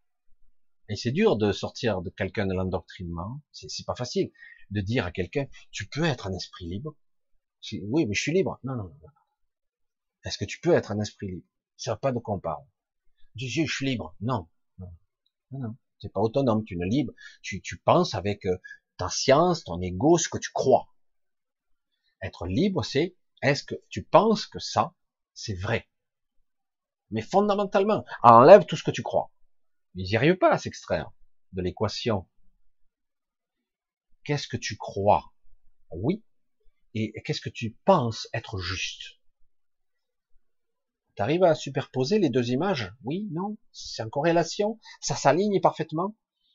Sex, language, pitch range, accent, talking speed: male, French, 105-155 Hz, French, 175 wpm